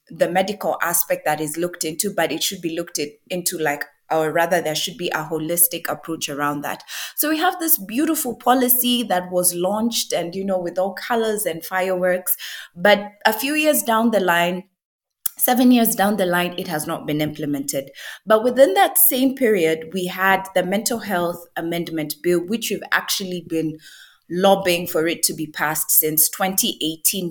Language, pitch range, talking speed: English, 160-205 Hz, 180 wpm